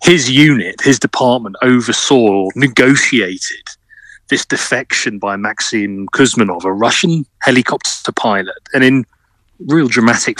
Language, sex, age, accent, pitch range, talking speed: English, male, 30-49, British, 110-135 Hz, 115 wpm